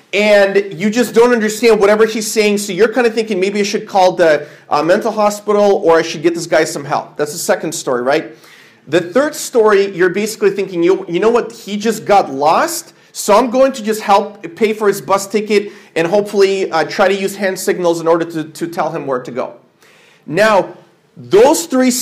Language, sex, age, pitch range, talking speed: English, male, 40-59, 175-230 Hz, 215 wpm